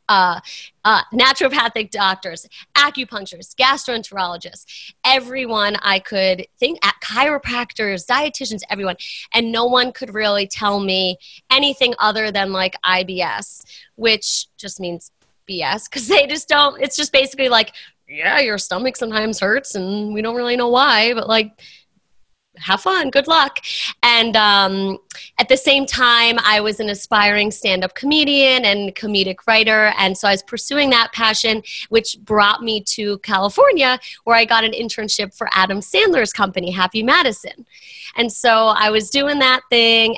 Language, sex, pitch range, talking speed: English, female, 195-240 Hz, 150 wpm